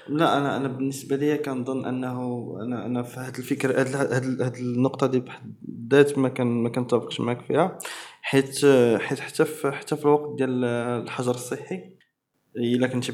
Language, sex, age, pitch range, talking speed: Arabic, male, 20-39, 125-170 Hz, 145 wpm